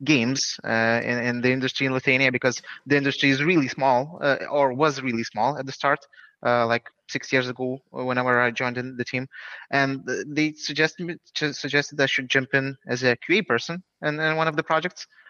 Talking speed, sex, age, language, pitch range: 210 wpm, male, 20-39, English, 125-145 Hz